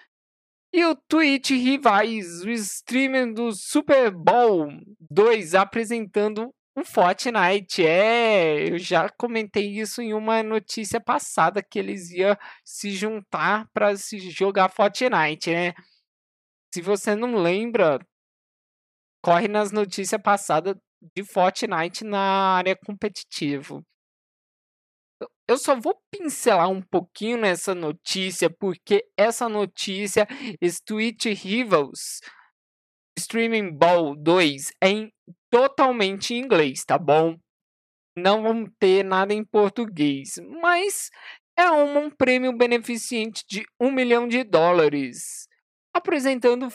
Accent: Brazilian